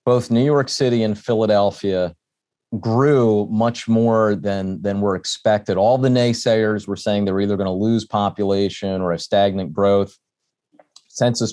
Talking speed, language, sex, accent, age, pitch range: 155 wpm, English, male, American, 30-49, 90-110 Hz